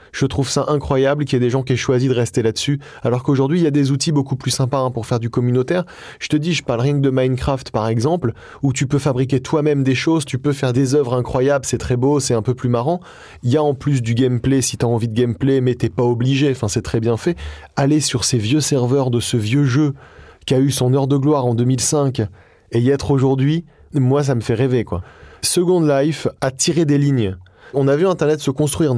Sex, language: male, French